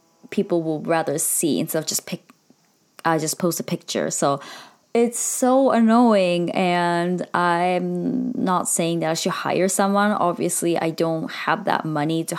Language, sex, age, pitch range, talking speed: English, female, 20-39, 170-215 Hz, 165 wpm